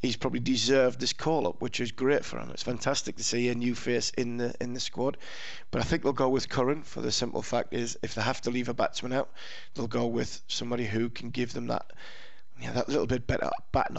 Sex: male